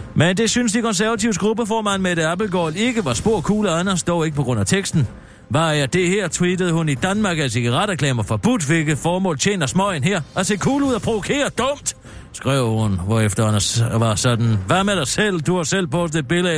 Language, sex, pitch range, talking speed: Danish, male, 120-190 Hz, 215 wpm